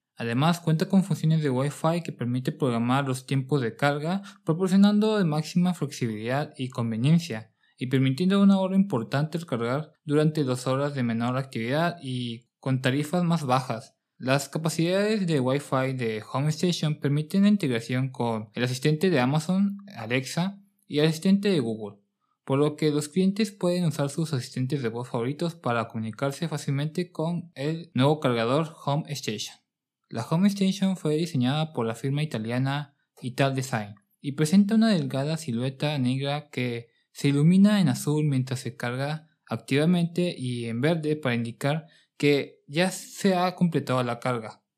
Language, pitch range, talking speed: Spanish, 125-170 Hz, 155 wpm